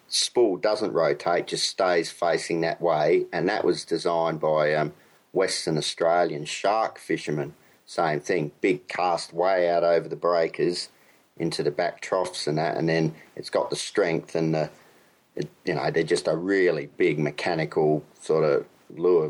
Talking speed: 160 wpm